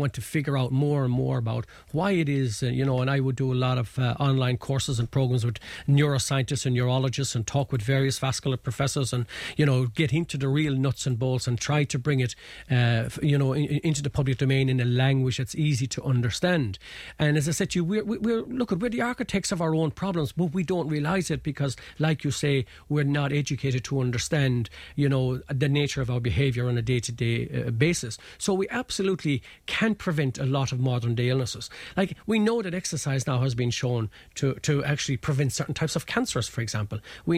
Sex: male